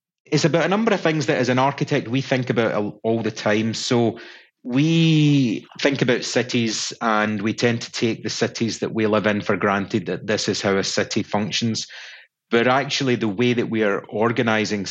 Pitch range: 105-125 Hz